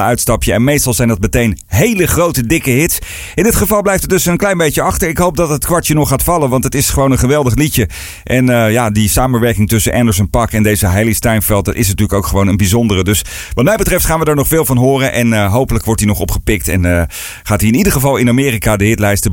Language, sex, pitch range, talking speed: Dutch, male, 100-140 Hz, 260 wpm